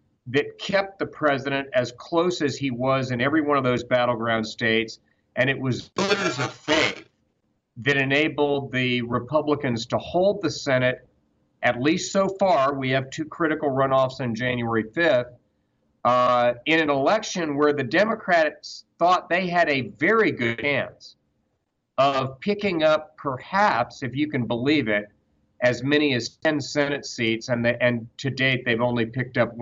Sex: male